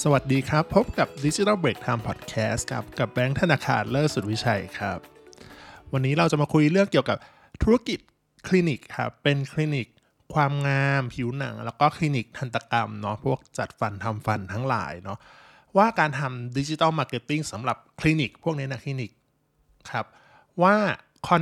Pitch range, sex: 115-150 Hz, male